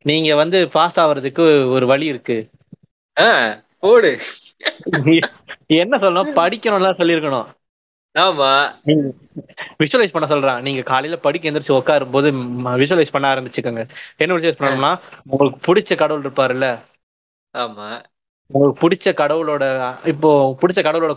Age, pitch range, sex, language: 20-39, 135-175 Hz, male, Tamil